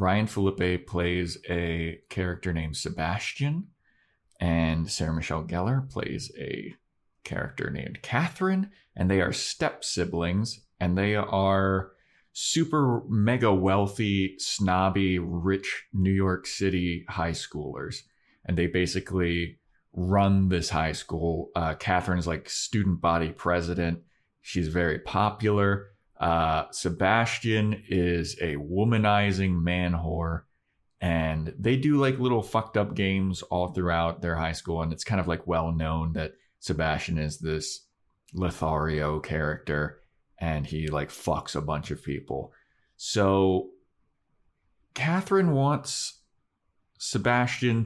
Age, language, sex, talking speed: 30-49, English, male, 120 wpm